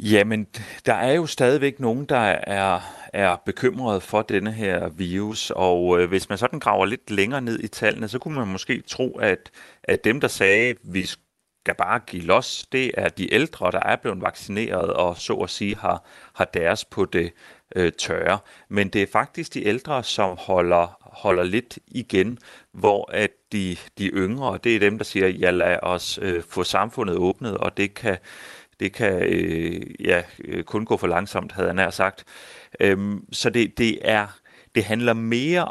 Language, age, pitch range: Danish, 30-49, 95-115 Hz